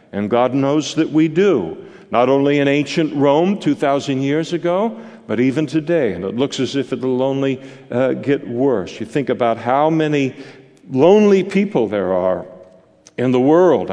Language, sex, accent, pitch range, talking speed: English, male, American, 115-155 Hz, 170 wpm